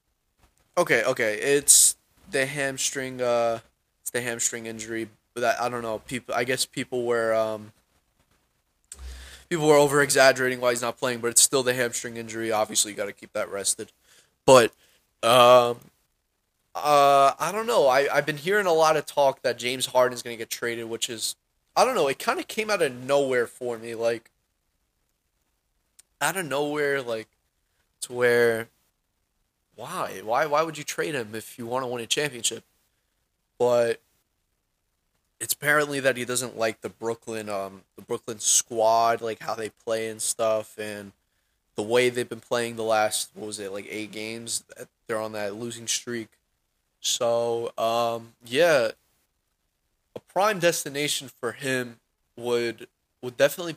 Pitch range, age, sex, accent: 110-130 Hz, 20-39, male, American